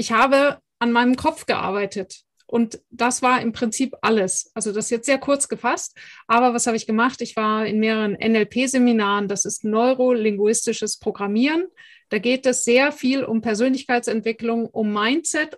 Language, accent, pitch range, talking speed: German, German, 215-250 Hz, 160 wpm